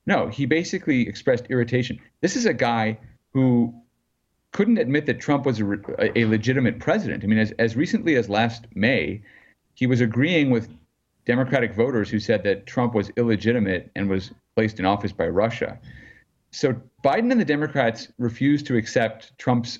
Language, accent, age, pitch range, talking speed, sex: English, American, 40-59, 105-130 Hz, 165 wpm, male